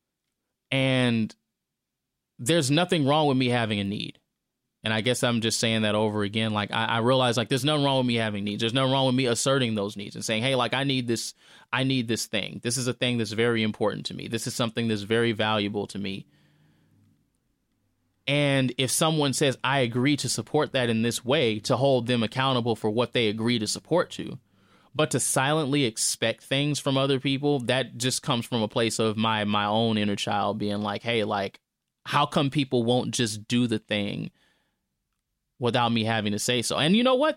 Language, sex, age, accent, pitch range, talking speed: English, male, 20-39, American, 110-140 Hz, 210 wpm